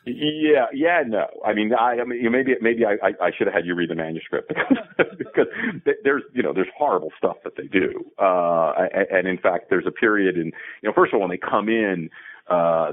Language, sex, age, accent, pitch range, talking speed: English, male, 40-59, American, 80-130 Hz, 230 wpm